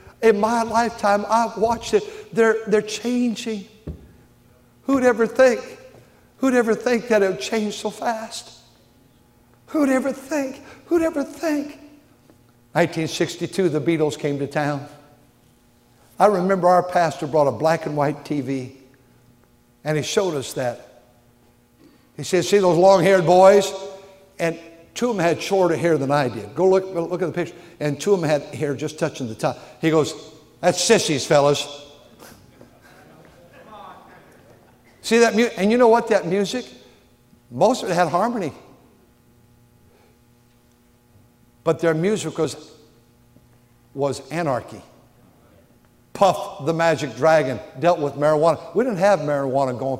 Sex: male